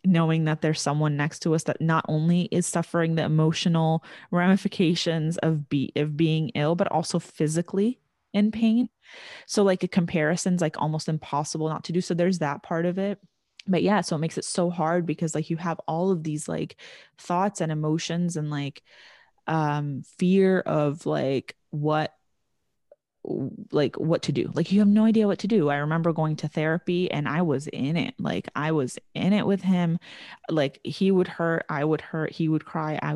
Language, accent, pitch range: English, American, 155-180 Hz